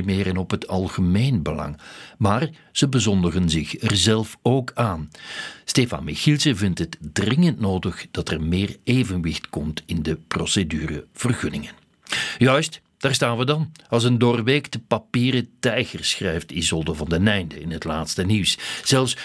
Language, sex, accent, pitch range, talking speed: Dutch, male, Dutch, 90-125 Hz, 150 wpm